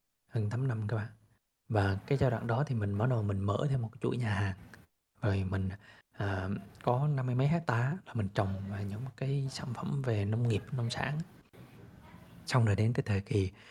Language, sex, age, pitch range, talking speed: Vietnamese, male, 20-39, 100-130 Hz, 210 wpm